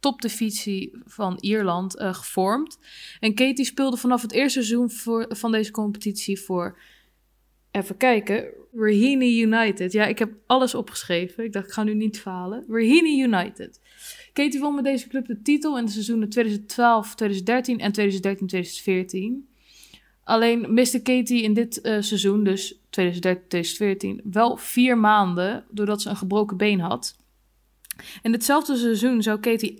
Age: 20-39